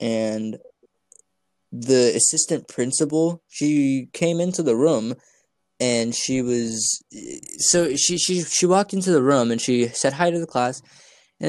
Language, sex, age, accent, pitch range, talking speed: English, male, 20-39, American, 110-140 Hz, 145 wpm